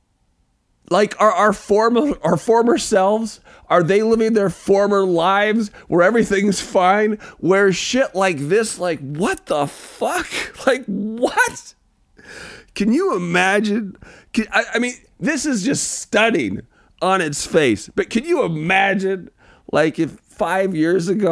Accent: American